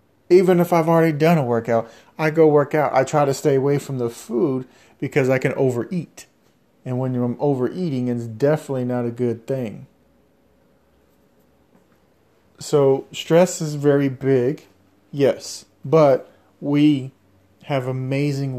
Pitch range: 115-145 Hz